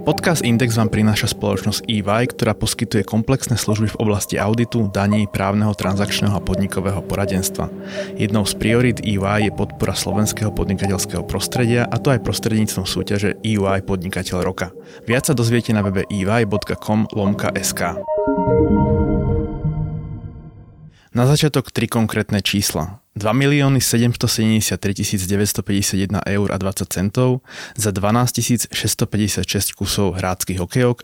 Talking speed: 120 wpm